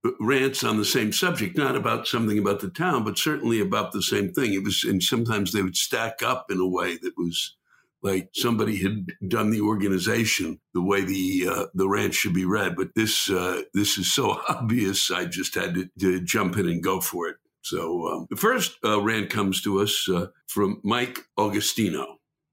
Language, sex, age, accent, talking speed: English, male, 60-79, American, 200 wpm